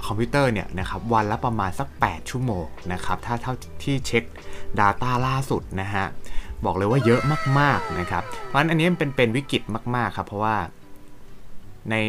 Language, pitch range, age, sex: Thai, 95-125 Hz, 20-39, male